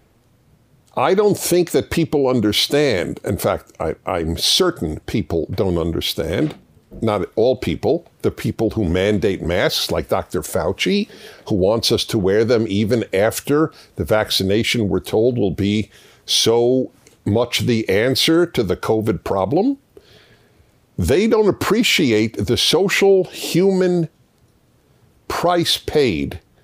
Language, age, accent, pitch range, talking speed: English, 50-69, American, 105-165 Hz, 120 wpm